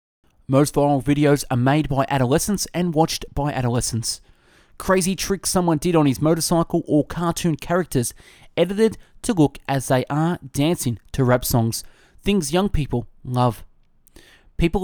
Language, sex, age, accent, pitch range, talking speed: English, male, 20-39, Australian, 125-170 Hz, 145 wpm